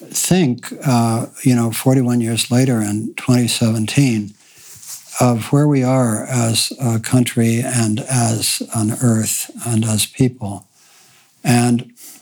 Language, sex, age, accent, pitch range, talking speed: English, male, 60-79, American, 115-135 Hz, 120 wpm